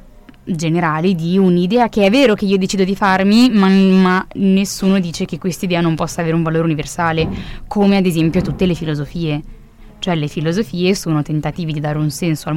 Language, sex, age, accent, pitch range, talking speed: Italian, female, 20-39, native, 165-190 Hz, 190 wpm